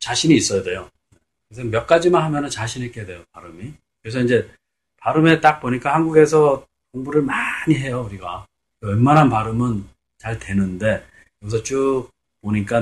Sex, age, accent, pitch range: male, 40-59, native, 90-140 Hz